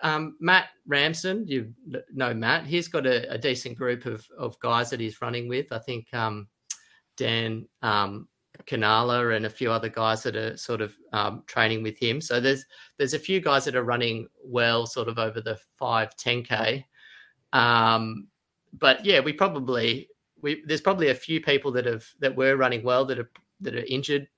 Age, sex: 30-49, male